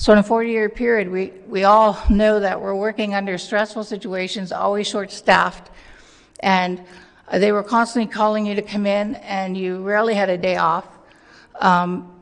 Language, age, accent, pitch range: English, 60-79, American, 190-225 Hz